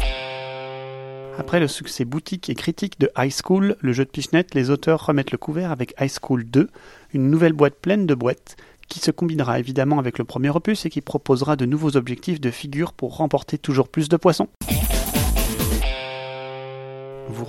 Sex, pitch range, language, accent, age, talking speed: male, 130-155 Hz, French, French, 30-49, 175 wpm